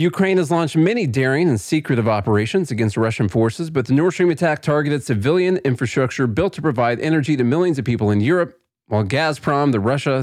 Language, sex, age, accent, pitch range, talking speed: English, male, 40-59, American, 110-150 Hz, 195 wpm